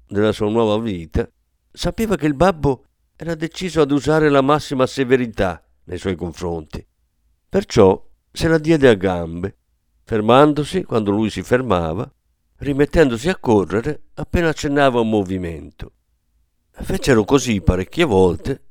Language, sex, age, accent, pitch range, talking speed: Italian, male, 50-69, native, 90-135 Hz, 130 wpm